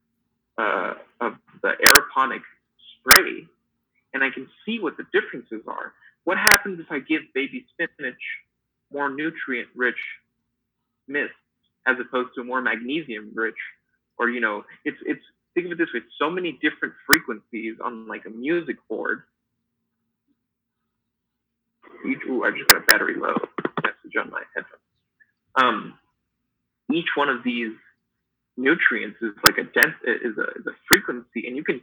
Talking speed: 150 wpm